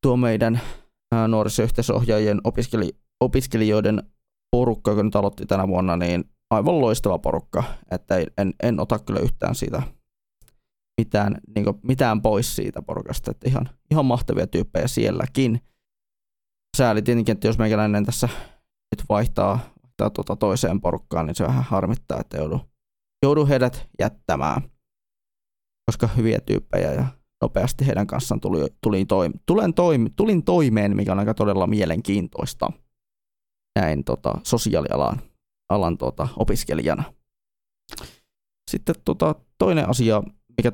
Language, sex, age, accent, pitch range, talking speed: Finnish, male, 20-39, native, 100-125 Hz, 120 wpm